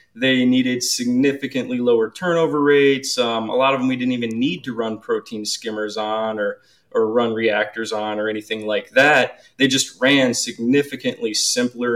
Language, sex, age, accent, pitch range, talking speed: English, male, 20-39, American, 115-145 Hz, 170 wpm